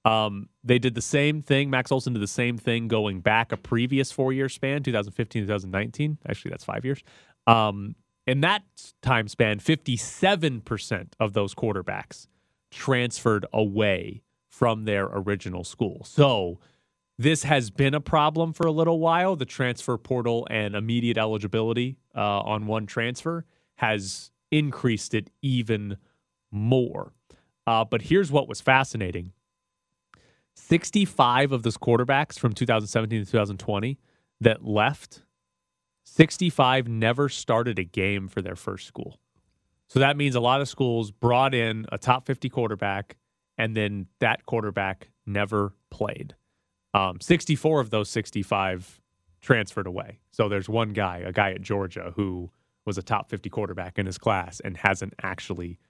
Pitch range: 100-130 Hz